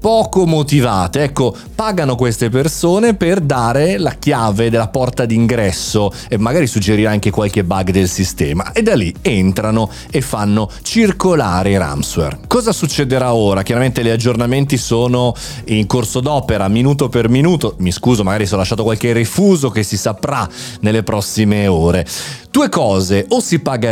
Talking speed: 155 wpm